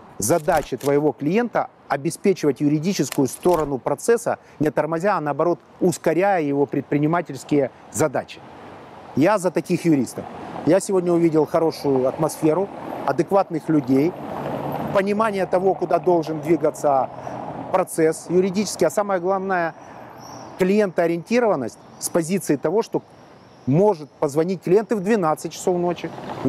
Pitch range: 145-185 Hz